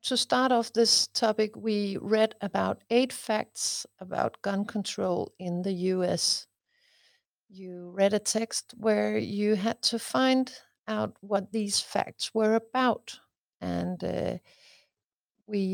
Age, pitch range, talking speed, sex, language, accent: 60-79, 180-230 Hz, 130 wpm, female, Danish, native